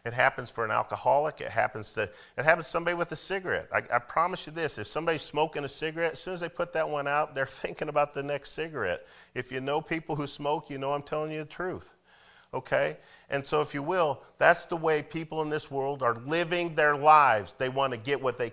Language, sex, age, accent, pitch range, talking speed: English, male, 40-59, American, 105-155 Hz, 235 wpm